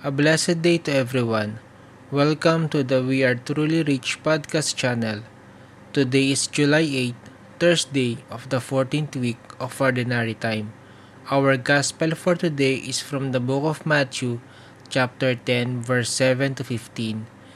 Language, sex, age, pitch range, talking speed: English, male, 20-39, 120-140 Hz, 145 wpm